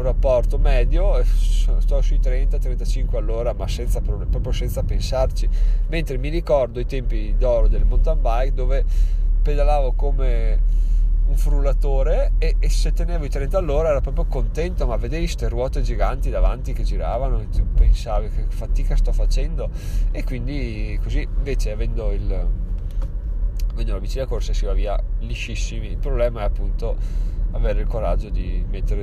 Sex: male